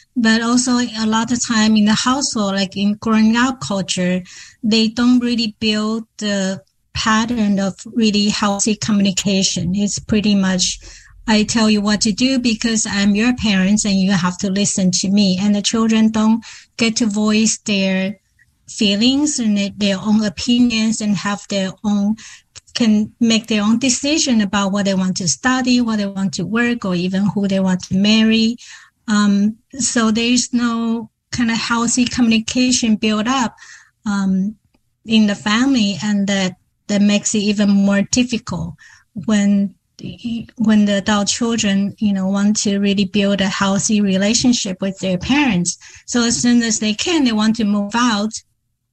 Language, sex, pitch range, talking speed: English, female, 200-230 Hz, 165 wpm